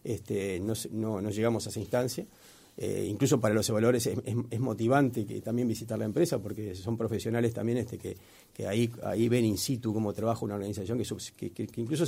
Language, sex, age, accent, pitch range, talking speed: Spanish, male, 40-59, Argentinian, 110-135 Hz, 210 wpm